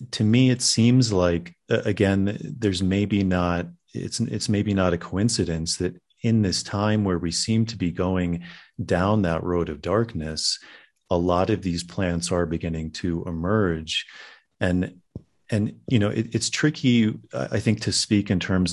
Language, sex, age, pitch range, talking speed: English, male, 30-49, 85-100 Hz, 165 wpm